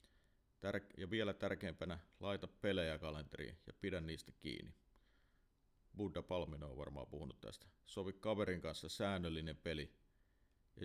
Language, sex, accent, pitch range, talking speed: Finnish, male, native, 80-100 Hz, 120 wpm